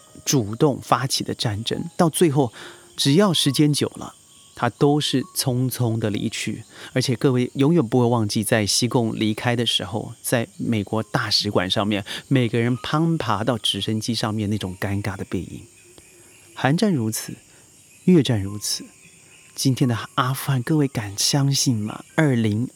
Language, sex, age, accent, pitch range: Chinese, male, 30-49, native, 110-145 Hz